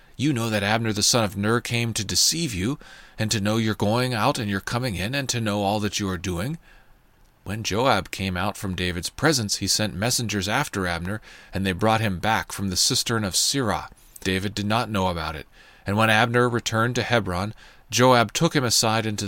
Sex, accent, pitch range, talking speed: male, American, 100-115 Hz, 215 wpm